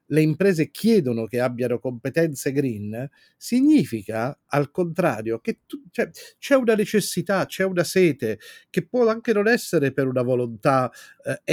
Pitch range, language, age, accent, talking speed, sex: 130-180 Hz, Italian, 40-59, native, 135 wpm, male